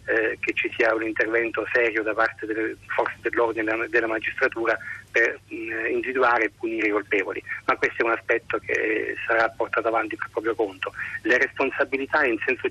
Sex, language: male, Italian